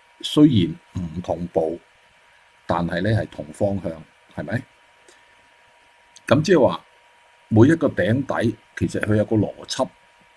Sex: male